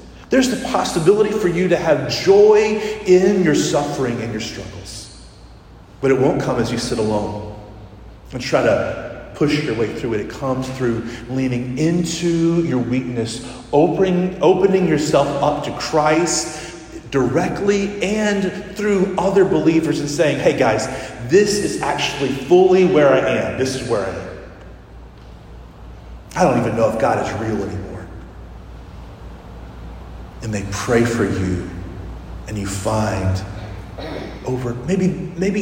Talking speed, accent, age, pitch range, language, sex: 140 wpm, American, 30-49, 115-180 Hz, English, male